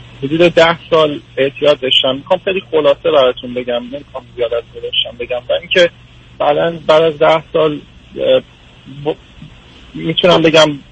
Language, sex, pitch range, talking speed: Persian, male, 125-165 Hz, 130 wpm